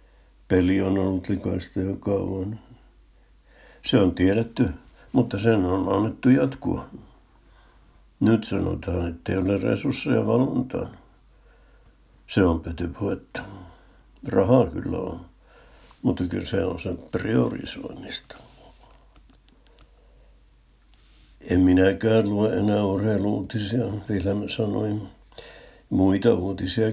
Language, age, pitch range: Finnish, 60-79, 95-110 Hz